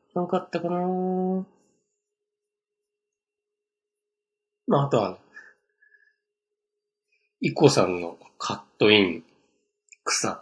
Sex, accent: male, native